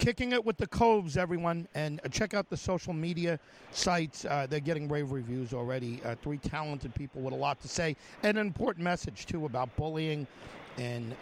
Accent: American